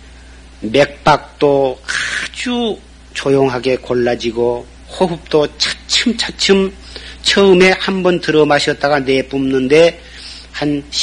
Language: Korean